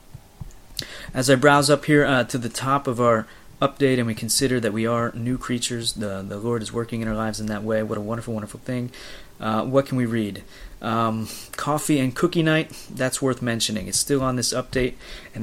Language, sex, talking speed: English, male, 215 wpm